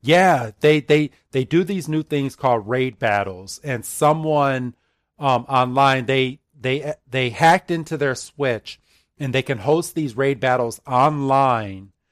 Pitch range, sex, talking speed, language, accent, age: 120-150 Hz, male, 150 wpm, English, American, 40-59